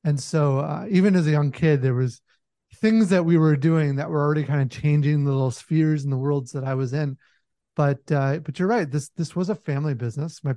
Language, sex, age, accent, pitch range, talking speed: English, male, 30-49, American, 145-185 Hz, 245 wpm